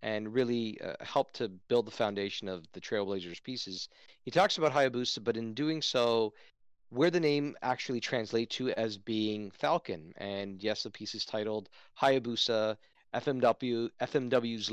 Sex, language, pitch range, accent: male, English, 105-125 Hz, American